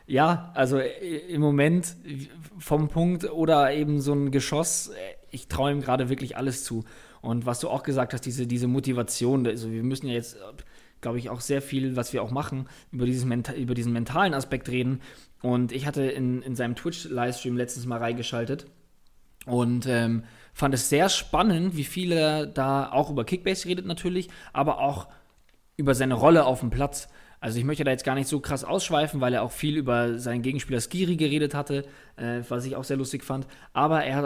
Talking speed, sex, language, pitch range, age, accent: 195 wpm, male, German, 125-150 Hz, 20-39, German